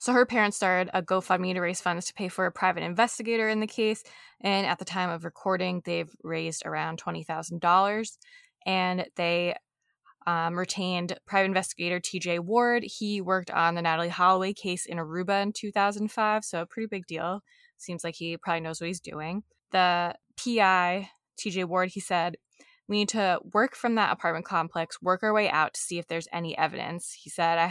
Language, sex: English, female